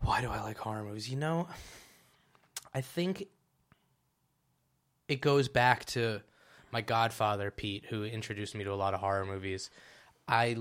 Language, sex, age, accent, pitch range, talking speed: English, male, 20-39, American, 105-120 Hz, 155 wpm